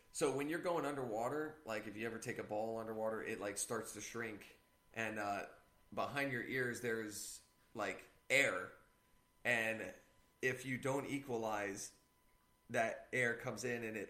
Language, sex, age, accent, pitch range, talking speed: English, male, 30-49, American, 105-125 Hz, 160 wpm